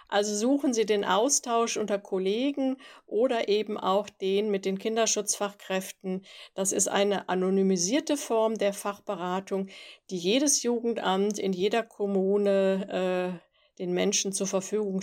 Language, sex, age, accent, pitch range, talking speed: German, female, 50-69, German, 190-225 Hz, 130 wpm